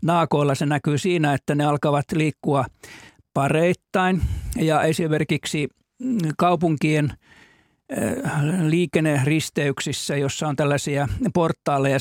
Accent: native